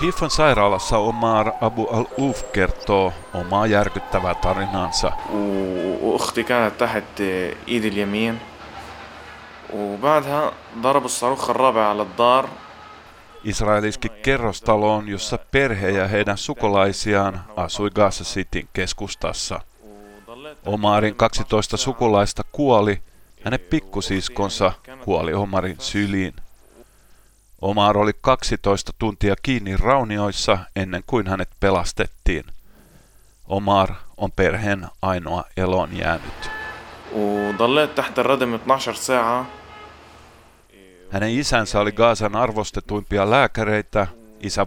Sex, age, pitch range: male, 30-49, 95-115 Hz